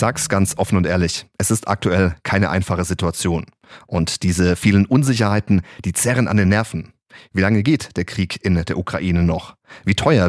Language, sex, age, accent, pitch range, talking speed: German, male, 30-49, German, 90-110 Hz, 185 wpm